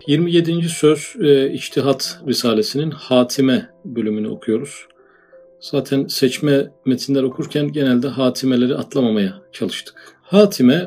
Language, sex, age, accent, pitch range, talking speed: Turkish, male, 40-59, native, 120-150 Hz, 95 wpm